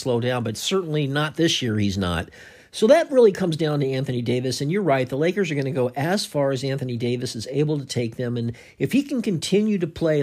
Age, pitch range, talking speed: 50-69, 125-170 Hz, 250 wpm